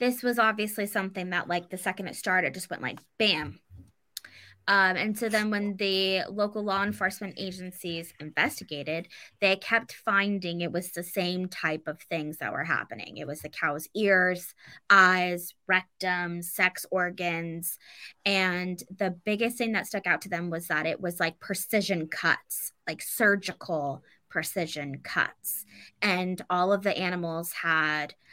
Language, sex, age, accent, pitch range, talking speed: English, female, 20-39, American, 170-210 Hz, 155 wpm